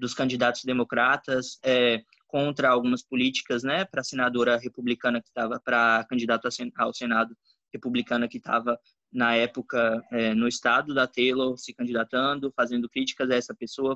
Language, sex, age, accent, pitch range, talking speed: Portuguese, male, 20-39, Brazilian, 125-155 Hz, 155 wpm